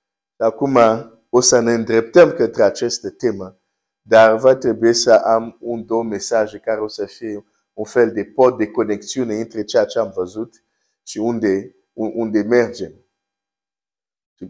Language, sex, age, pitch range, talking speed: Romanian, male, 50-69, 100-130 Hz, 150 wpm